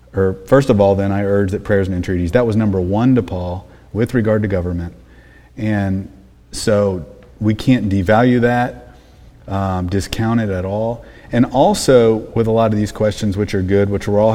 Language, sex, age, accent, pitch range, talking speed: English, male, 40-59, American, 90-120 Hz, 190 wpm